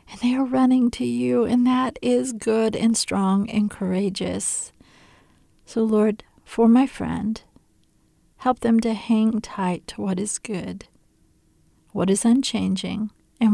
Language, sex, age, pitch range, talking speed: English, female, 50-69, 190-235 Hz, 140 wpm